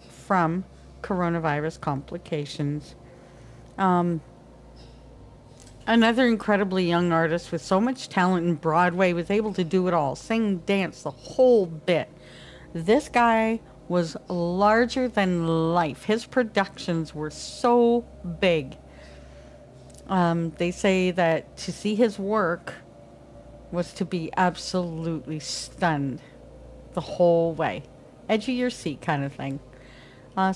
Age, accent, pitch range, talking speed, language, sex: 50-69, American, 160-195 Hz, 120 wpm, English, female